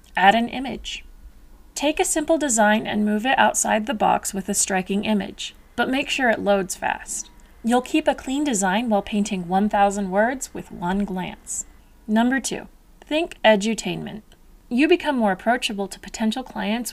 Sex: female